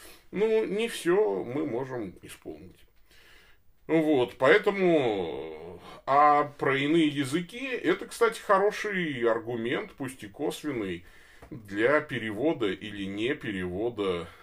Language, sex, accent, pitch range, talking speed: Russian, male, native, 95-145 Hz, 100 wpm